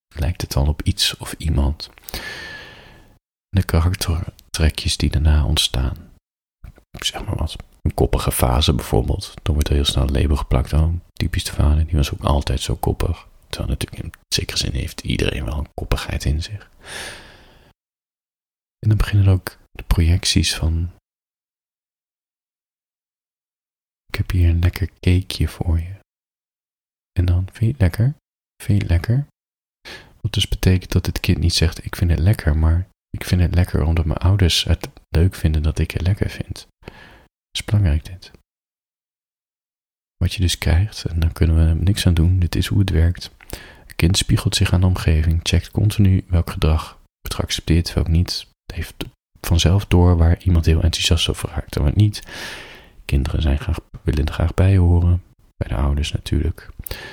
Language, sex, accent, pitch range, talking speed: Dutch, male, Dutch, 80-95 Hz, 170 wpm